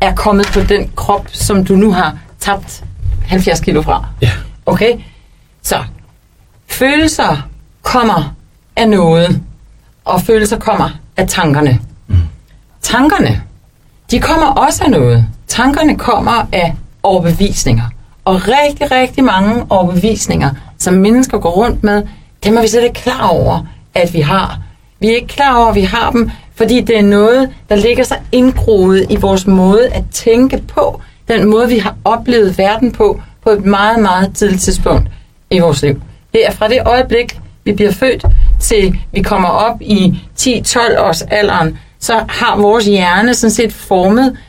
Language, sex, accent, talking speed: Danish, female, native, 155 wpm